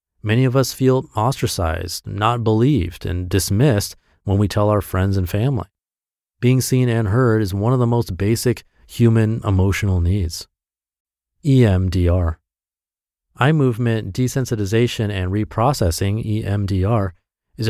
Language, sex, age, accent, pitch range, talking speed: English, male, 30-49, American, 90-115 Hz, 125 wpm